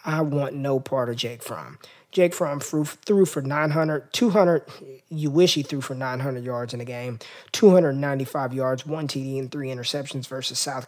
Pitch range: 135-170 Hz